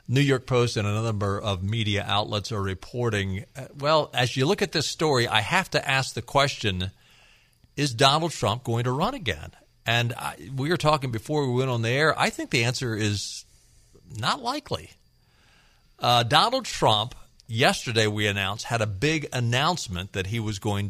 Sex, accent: male, American